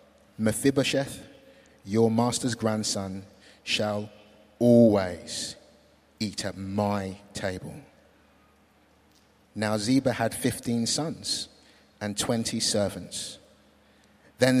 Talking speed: 80 wpm